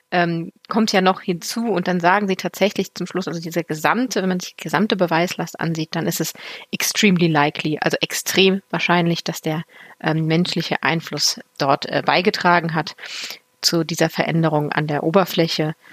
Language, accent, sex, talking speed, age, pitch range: German, German, female, 170 wpm, 30-49, 170-225 Hz